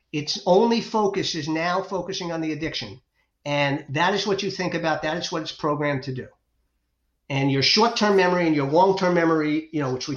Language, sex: English, male